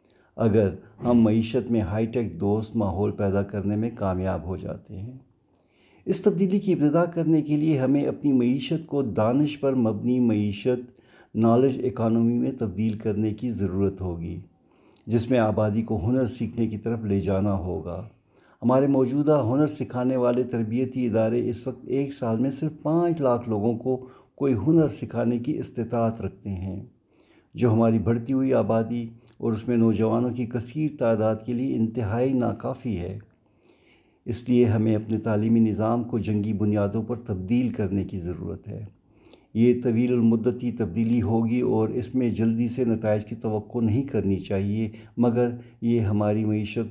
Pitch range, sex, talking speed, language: 105-125 Hz, male, 160 wpm, Urdu